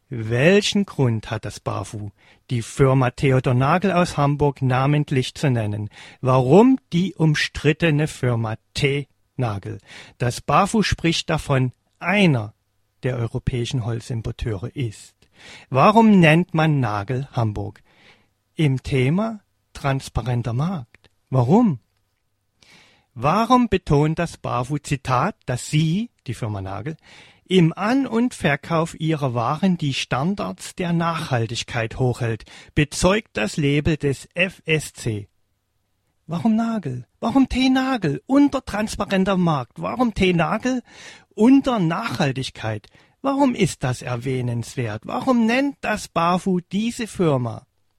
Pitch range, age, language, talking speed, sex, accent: 115-180 Hz, 40-59, German, 105 wpm, male, German